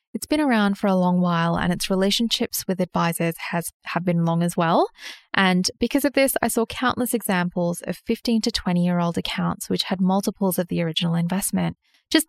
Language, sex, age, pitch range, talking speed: English, female, 10-29, 175-230 Hz, 190 wpm